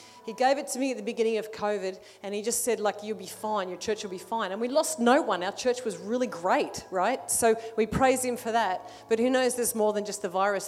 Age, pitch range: 40-59, 205-240 Hz